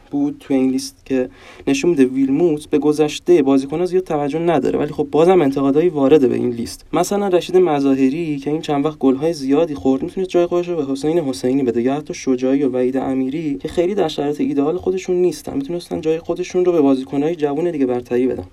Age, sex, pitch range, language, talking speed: 20-39, male, 130-160 Hz, Persian, 200 wpm